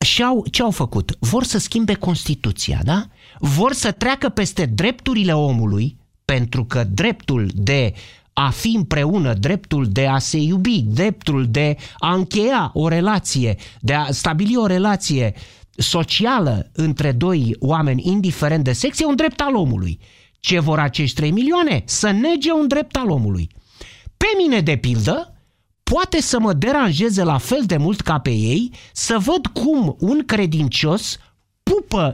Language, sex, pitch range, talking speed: Romanian, male, 130-215 Hz, 155 wpm